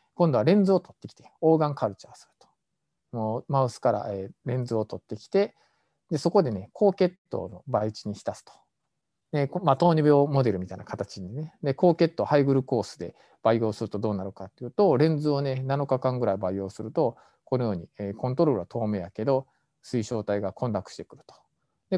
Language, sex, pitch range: Japanese, male, 105-155 Hz